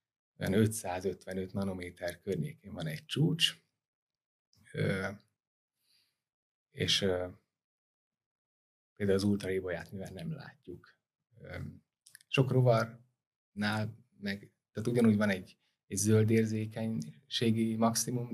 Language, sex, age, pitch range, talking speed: Hungarian, male, 30-49, 100-120 Hz, 80 wpm